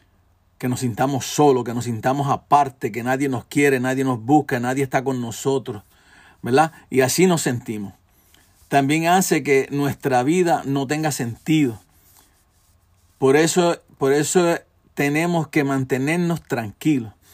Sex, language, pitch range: male, Spanish, 115-145 Hz